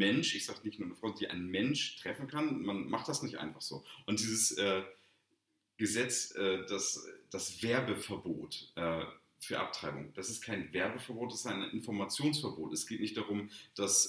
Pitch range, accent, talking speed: 85-105 Hz, German, 180 wpm